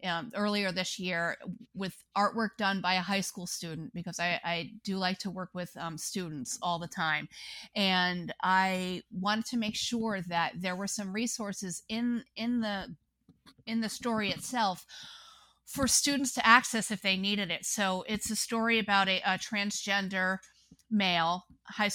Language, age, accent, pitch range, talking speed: English, 30-49, American, 180-220 Hz, 165 wpm